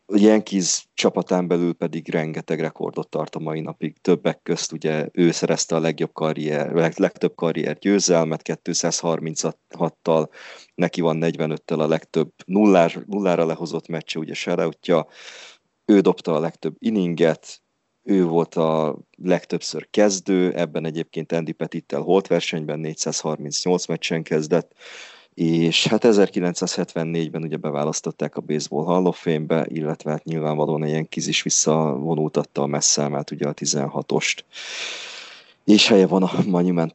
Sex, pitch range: male, 80-90 Hz